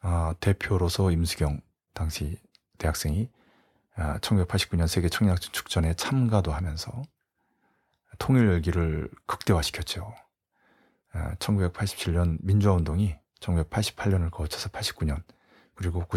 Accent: native